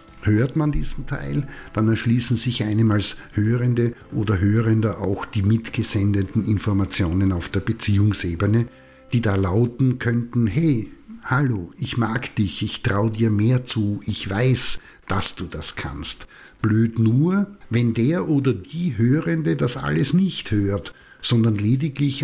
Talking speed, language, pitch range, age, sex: 140 wpm, German, 105-125 Hz, 60-79, male